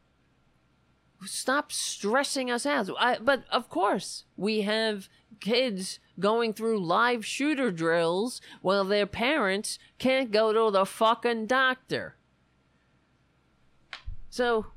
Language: English